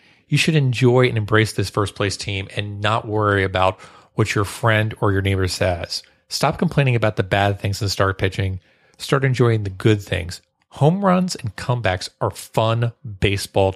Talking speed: 175 wpm